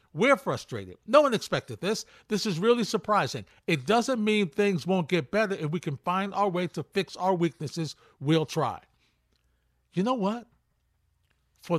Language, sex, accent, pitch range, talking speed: English, male, American, 160-215 Hz, 170 wpm